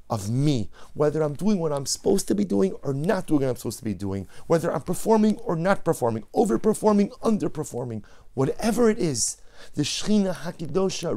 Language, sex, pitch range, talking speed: English, male, 95-140 Hz, 185 wpm